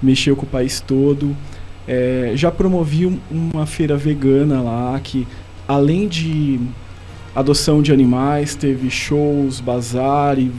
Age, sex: 20-39, male